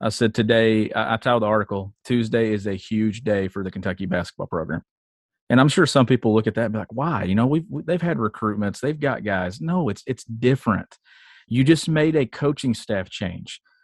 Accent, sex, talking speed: American, male, 220 wpm